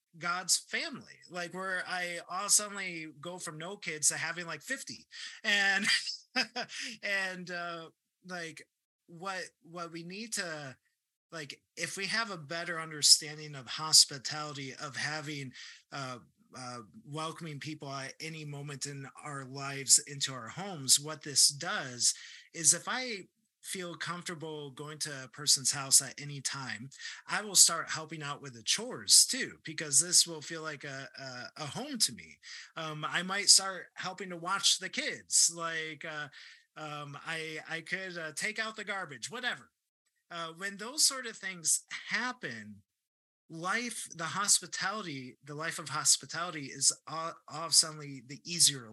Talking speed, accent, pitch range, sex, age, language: 155 wpm, American, 145-180 Hz, male, 30-49, English